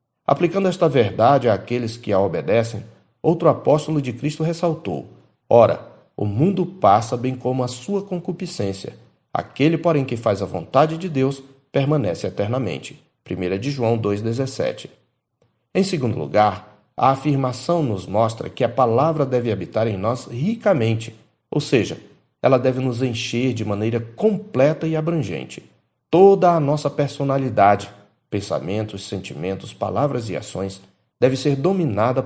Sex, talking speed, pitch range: male, 135 wpm, 110-155 Hz